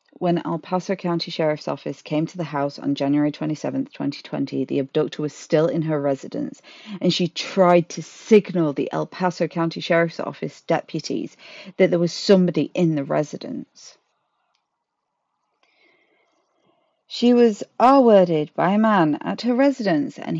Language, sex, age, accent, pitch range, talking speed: English, female, 40-59, British, 165-240 Hz, 145 wpm